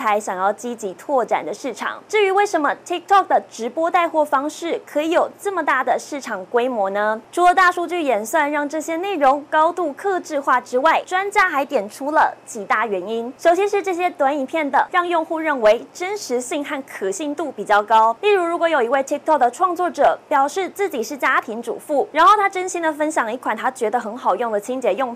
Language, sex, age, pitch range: Chinese, female, 20-39, 250-350 Hz